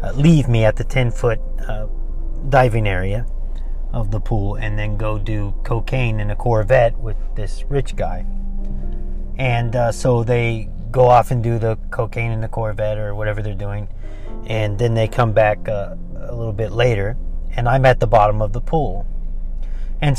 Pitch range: 100-130 Hz